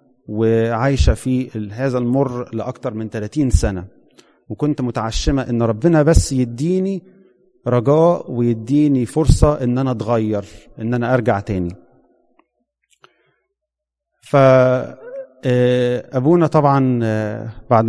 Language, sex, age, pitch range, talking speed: English, male, 30-49, 110-130 Hz, 90 wpm